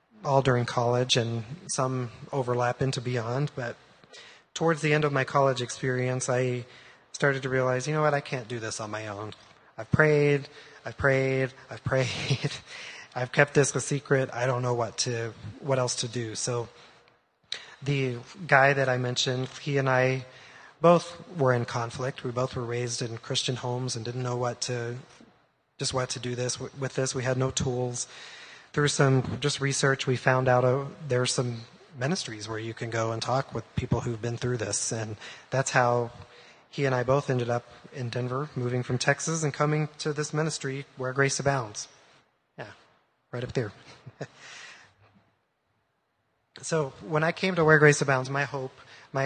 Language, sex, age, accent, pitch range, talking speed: English, male, 20-39, American, 120-140 Hz, 180 wpm